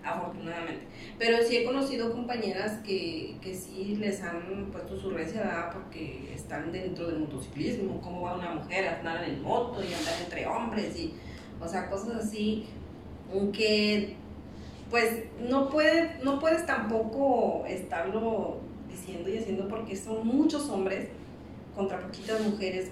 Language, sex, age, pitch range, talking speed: Spanish, female, 30-49, 190-225 Hz, 145 wpm